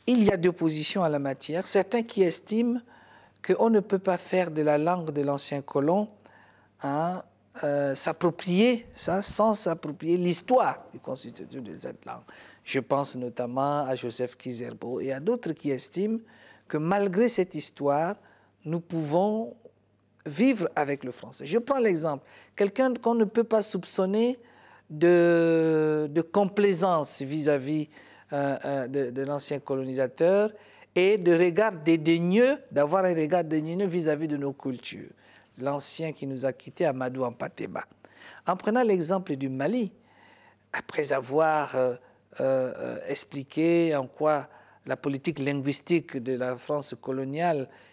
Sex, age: male, 50-69